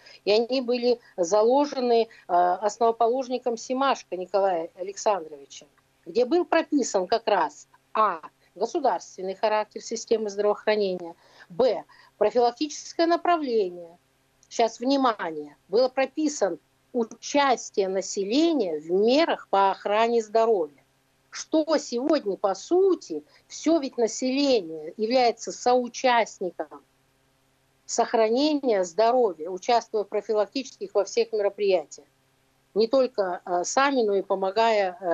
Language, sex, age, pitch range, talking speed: Russian, female, 50-69, 185-245 Hz, 95 wpm